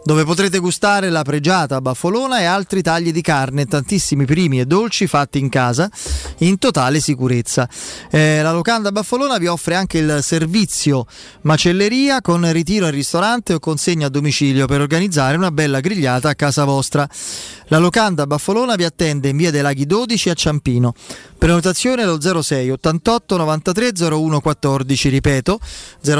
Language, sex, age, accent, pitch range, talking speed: Italian, male, 30-49, native, 145-195 Hz, 155 wpm